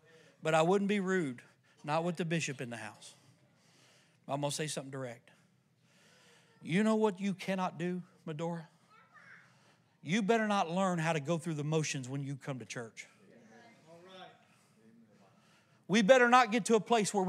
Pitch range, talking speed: 165-220 Hz, 165 wpm